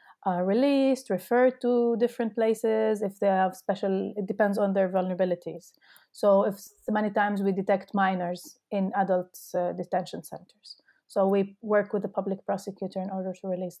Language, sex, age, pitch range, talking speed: English, female, 30-49, 195-230 Hz, 165 wpm